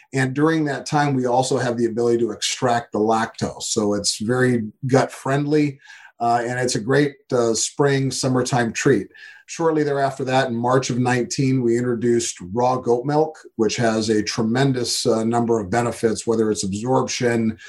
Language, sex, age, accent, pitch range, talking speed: English, male, 40-59, American, 115-130 Hz, 170 wpm